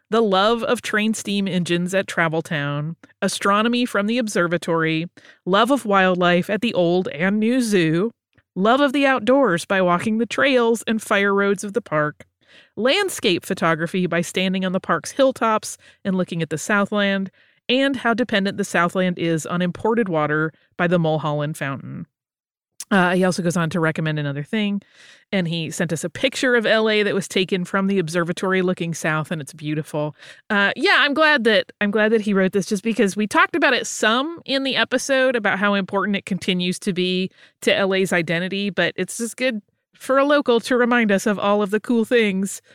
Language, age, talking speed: English, 30-49, 190 wpm